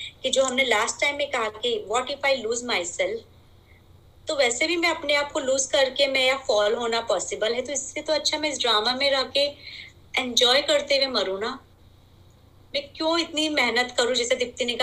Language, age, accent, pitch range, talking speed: Hindi, 30-49, native, 235-310 Hz, 95 wpm